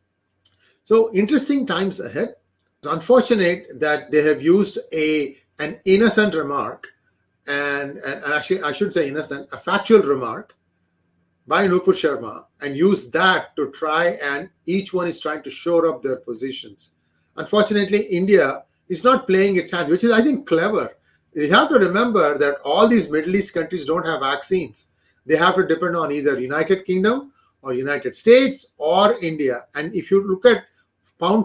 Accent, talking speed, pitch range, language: Indian, 165 wpm, 145-200 Hz, English